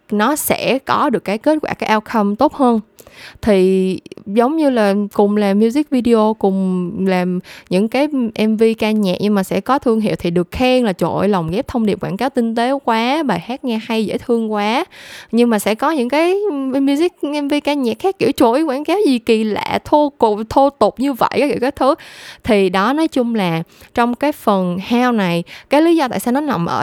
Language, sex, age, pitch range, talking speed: Vietnamese, female, 10-29, 195-265 Hz, 215 wpm